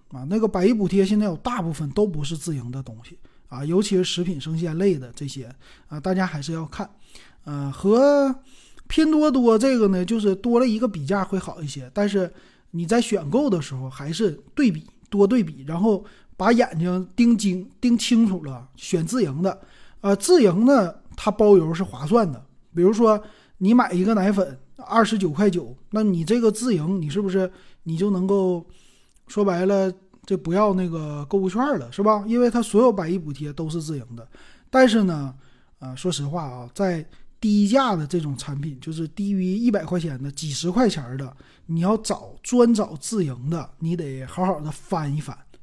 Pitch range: 160-215 Hz